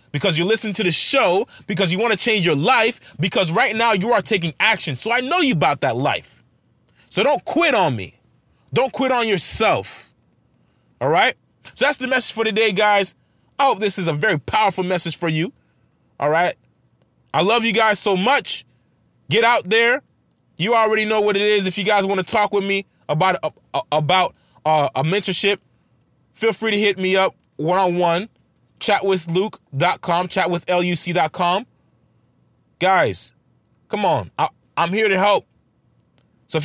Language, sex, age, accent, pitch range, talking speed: English, male, 20-39, American, 175-220 Hz, 170 wpm